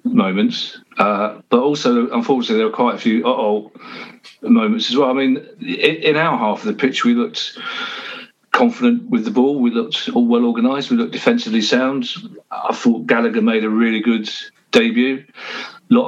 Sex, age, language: male, 40-59, English